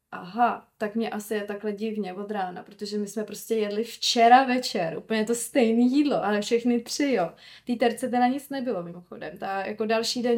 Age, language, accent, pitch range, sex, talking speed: 20-39, Czech, native, 215-245 Hz, female, 195 wpm